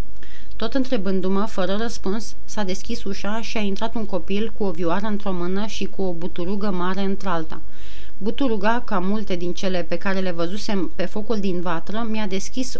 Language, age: Romanian, 30-49